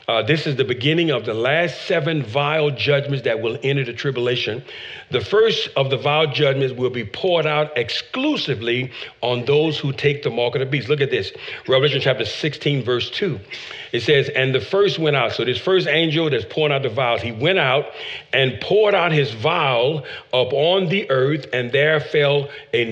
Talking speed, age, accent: 200 wpm, 50-69, American